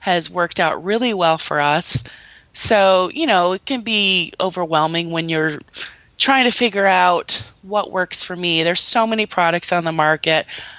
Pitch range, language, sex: 175-240 Hz, English, female